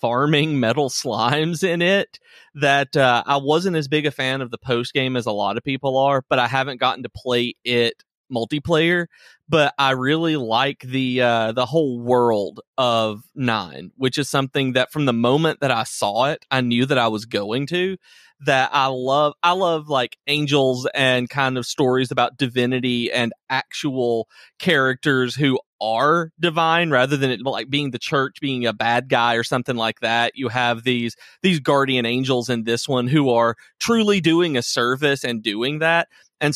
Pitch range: 120-145 Hz